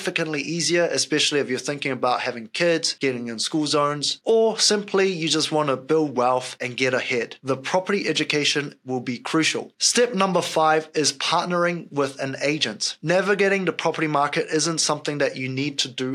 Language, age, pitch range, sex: English, 20-39, 140-170 Hz, male